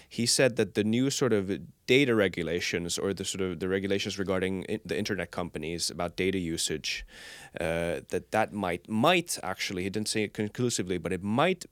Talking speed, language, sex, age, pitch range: 185 wpm, Finnish, male, 20-39, 95-115 Hz